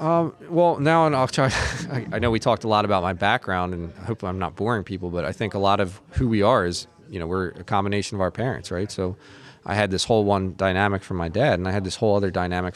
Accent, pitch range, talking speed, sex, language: American, 90-110 Hz, 280 wpm, male, English